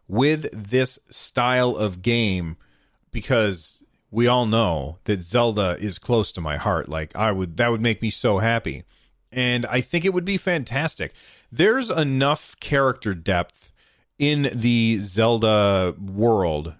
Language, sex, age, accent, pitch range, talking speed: English, male, 30-49, American, 100-130 Hz, 145 wpm